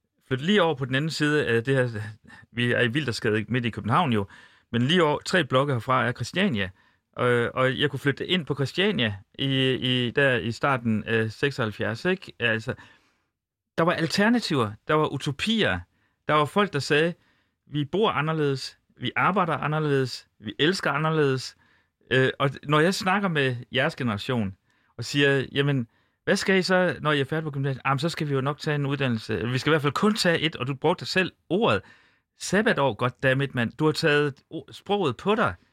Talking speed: 195 wpm